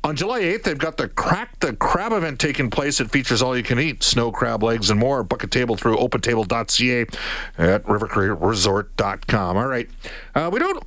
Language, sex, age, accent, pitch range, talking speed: English, male, 50-69, American, 115-150 Hz, 170 wpm